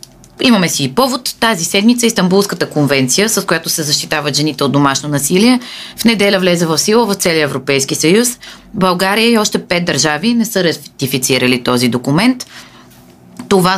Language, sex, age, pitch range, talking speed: Bulgarian, female, 20-39, 140-195 Hz, 155 wpm